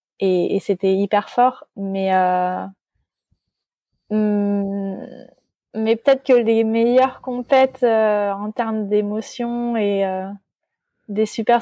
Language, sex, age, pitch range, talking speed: French, female, 20-39, 195-235 Hz, 110 wpm